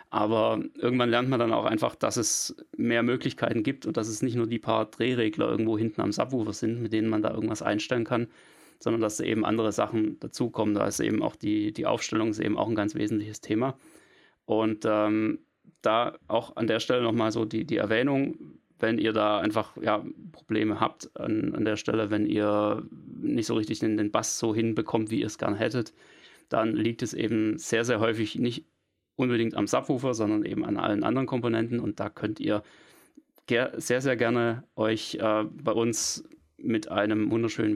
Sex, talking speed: male, 190 wpm